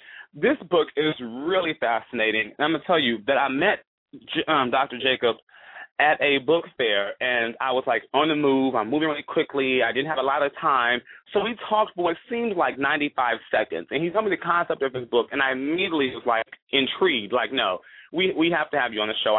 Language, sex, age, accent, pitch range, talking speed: English, male, 30-49, American, 130-185 Hz, 225 wpm